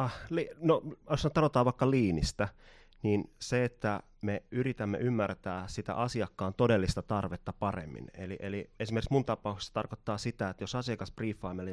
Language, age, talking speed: Finnish, 30-49, 135 wpm